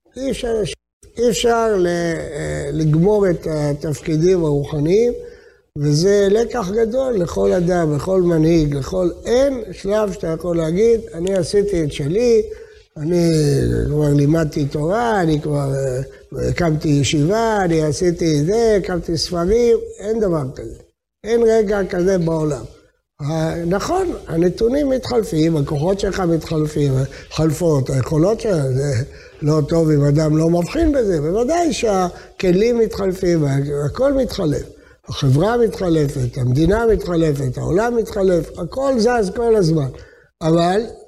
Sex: male